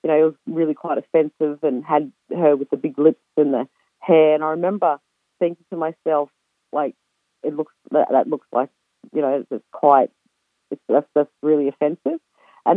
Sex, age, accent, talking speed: female, 40-59, Australian, 190 wpm